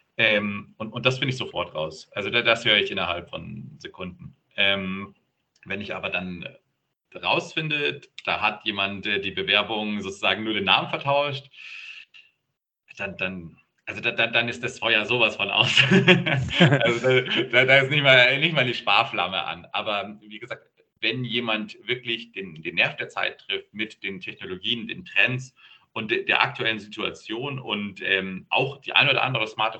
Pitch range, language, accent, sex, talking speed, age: 100-125 Hz, German, German, male, 165 wpm, 40-59